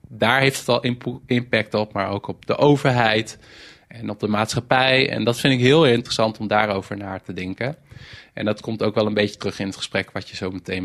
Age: 20-39